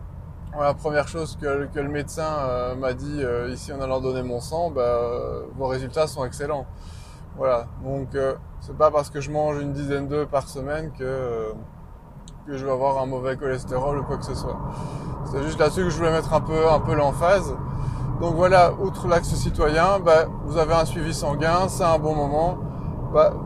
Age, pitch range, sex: 20-39, 130-155 Hz, male